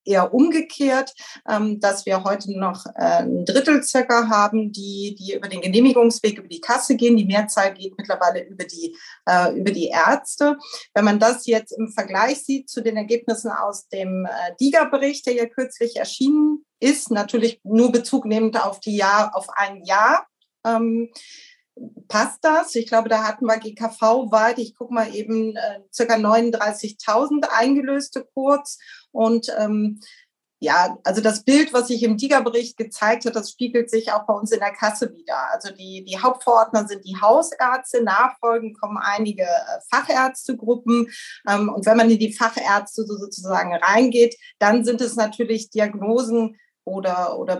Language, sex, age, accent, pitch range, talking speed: German, female, 40-59, German, 205-245 Hz, 155 wpm